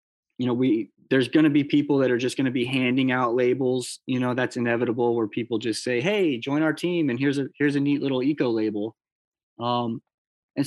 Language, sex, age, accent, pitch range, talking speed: English, male, 30-49, American, 125-150 Hz, 225 wpm